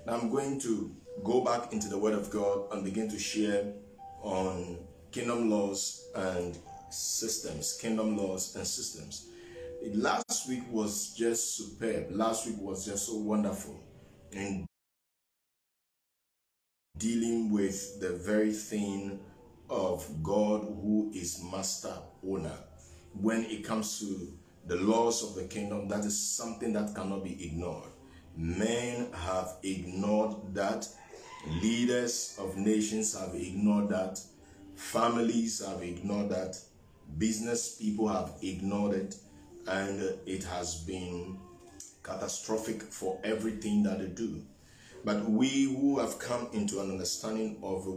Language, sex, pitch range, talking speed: English, male, 95-110 Hz, 130 wpm